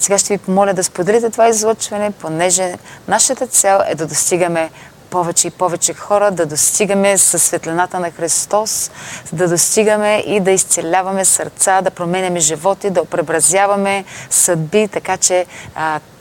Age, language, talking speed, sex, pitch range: 30-49, Bulgarian, 145 wpm, female, 165-200 Hz